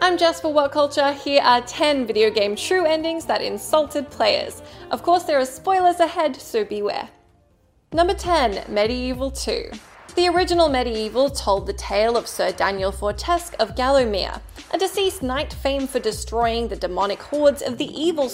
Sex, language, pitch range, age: female, English, 220-325 Hz, 20-39